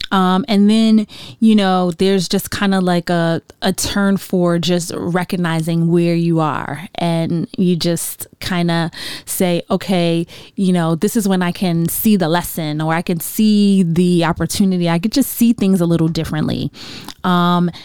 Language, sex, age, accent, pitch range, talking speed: English, female, 20-39, American, 160-185 Hz, 170 wpm